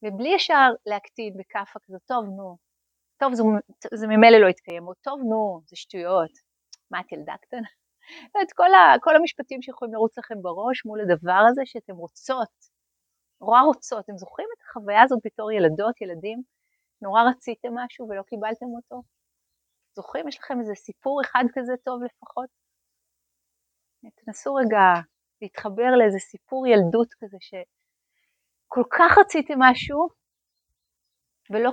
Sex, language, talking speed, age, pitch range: female, Hebrew, 140 wpm, 30-49, 185-255 Hz